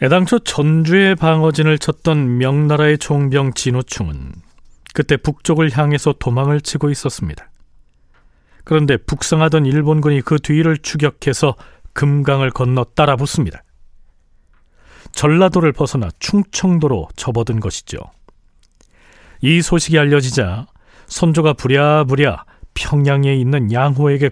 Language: Korean